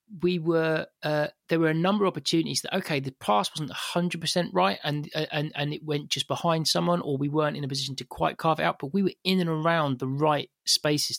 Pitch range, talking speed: 125-150 Hz, 235 wpm